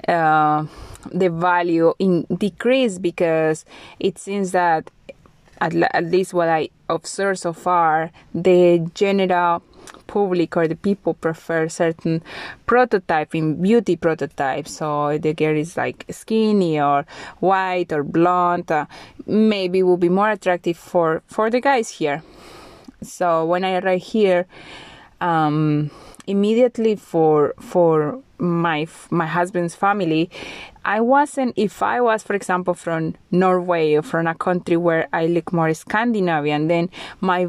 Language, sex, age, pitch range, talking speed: English, female, 20-39, 165-200 Hz, 135 wpm